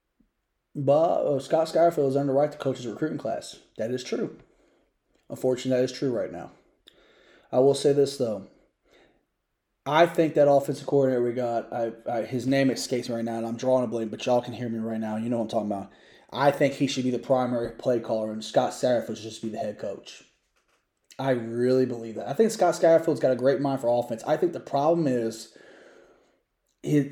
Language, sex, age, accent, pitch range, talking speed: English, male, 20-39, American, 125-160 Hz, 220 wpm